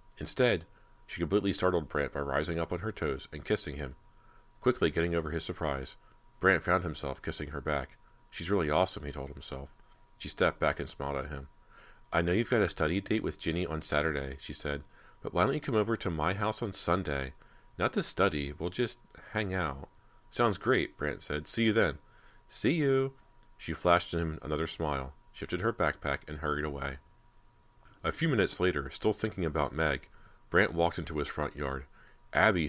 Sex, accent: male, American